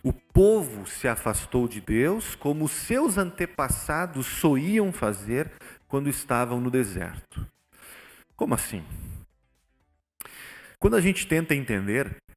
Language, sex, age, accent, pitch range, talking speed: Portuguese, male, 40-59, Brazilian, 105-150 Hz, 110 wpm